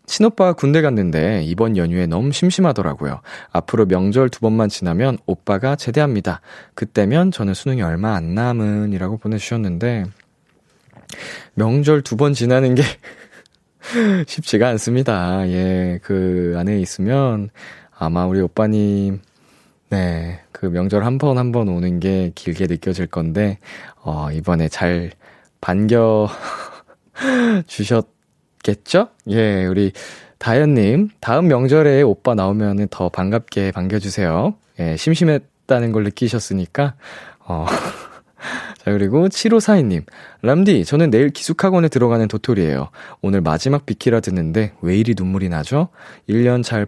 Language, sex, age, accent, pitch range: Korean, male, 20-39, native, 95-140 Hz